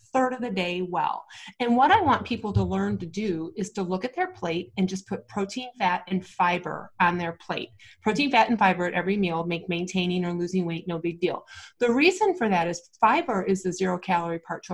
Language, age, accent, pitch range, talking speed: English, 30-49, American, 175-215 Hz, 230 wpm